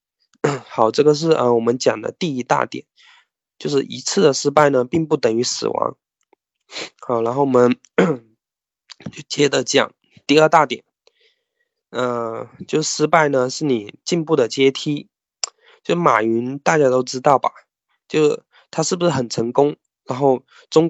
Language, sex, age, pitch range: Chinese, male, 20-39, 125-160 Hz